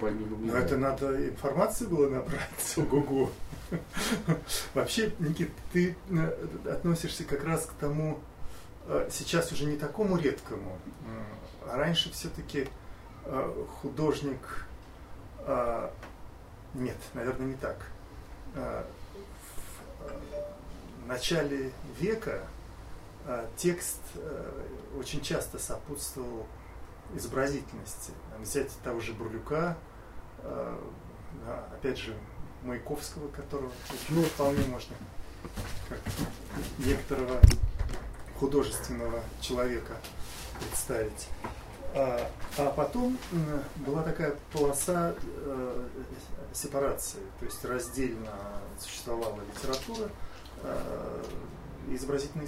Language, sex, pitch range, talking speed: Russian, male, 110-155 Hz, 75 wpm